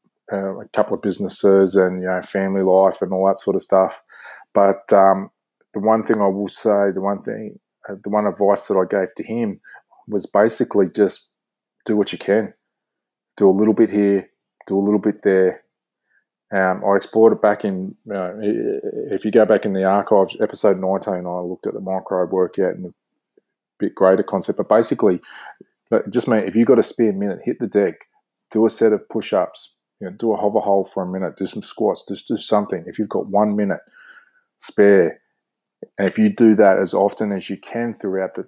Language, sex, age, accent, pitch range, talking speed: English, male, 20-39, Australian, 95-110 Hz, 200 wpm